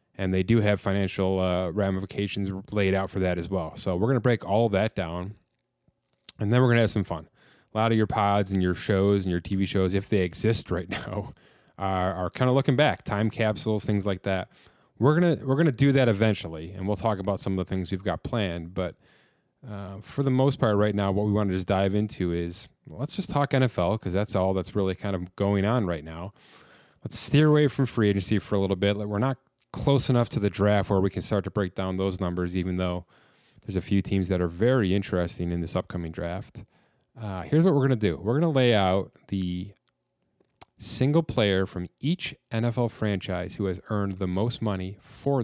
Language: English